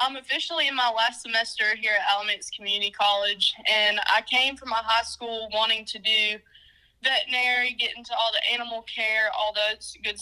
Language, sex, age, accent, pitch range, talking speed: English, female, 10-29, American, 205-235 Hz, 180 wpm